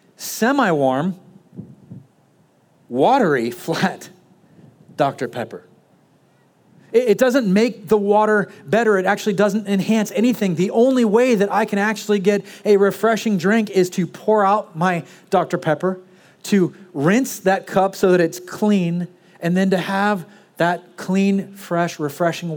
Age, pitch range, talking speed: 30-49, 175-210 Hz, 135 wpm